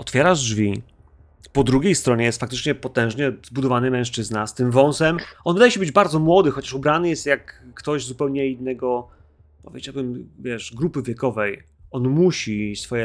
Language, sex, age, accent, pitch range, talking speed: Polish, male, 30-49, native, 90-130 Hz, 150 wpm